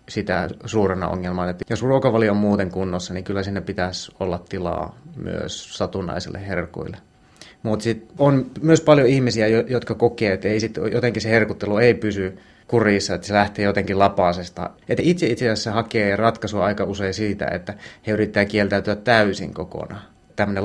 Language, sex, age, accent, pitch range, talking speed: Finnish, male, 30-49, native, 95-110 Hz, 160 wpm